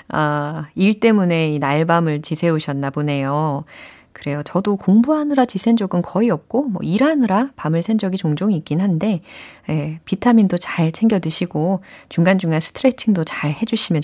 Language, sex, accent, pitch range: Korean, female, native, 155-235 Hz